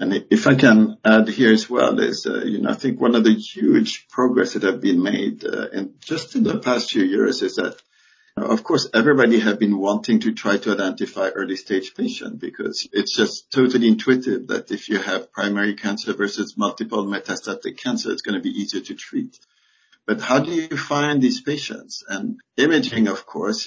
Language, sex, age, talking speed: English, male, 50-69, 205 wpm